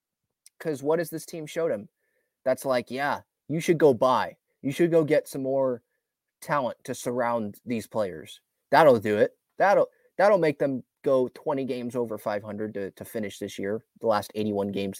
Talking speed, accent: 190 wpm, American